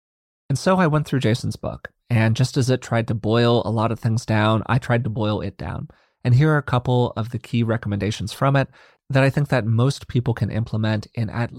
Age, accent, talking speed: 30-49, American, 240 wpm